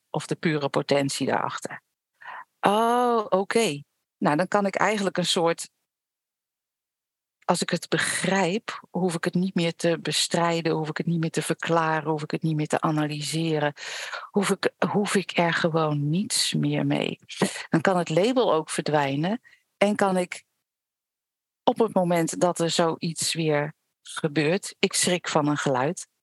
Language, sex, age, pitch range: Dutch, female, 50-69, 165-215 Hz